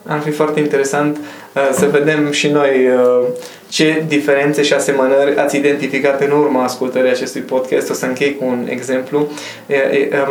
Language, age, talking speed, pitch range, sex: Romanian, 20-39, 150 wpm, 145-185 Hz, male